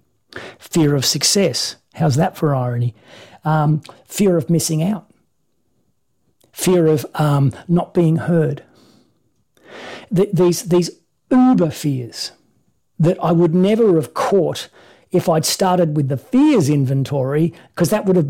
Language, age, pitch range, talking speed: English, 40-59, 145-185 Hz, 130 wpm